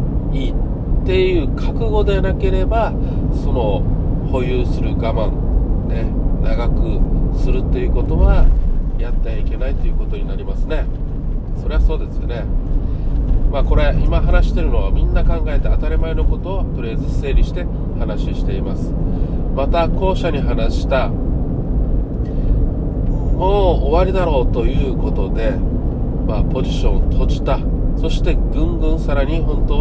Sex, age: male, 40-59